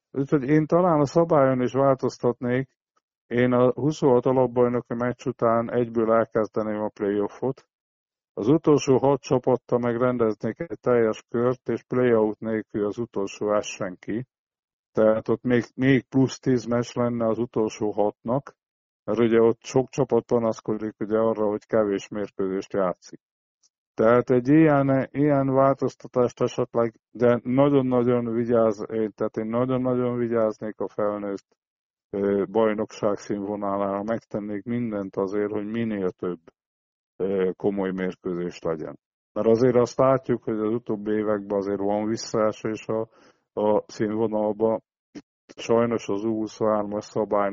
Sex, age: male, 50-69